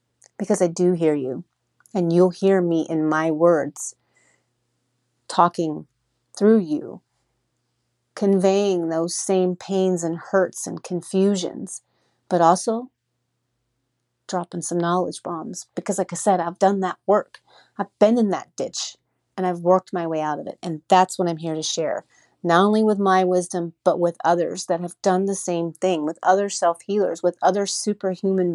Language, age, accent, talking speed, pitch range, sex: English, 40-59, American, 165 wpm, 165-190 Hz, female